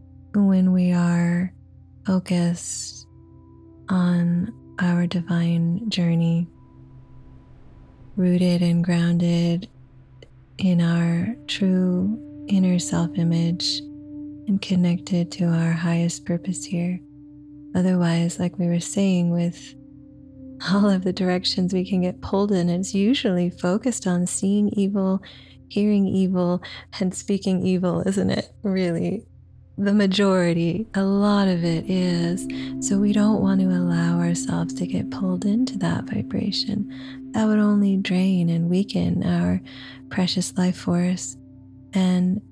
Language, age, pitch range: English, 20-39, 140-190 Hz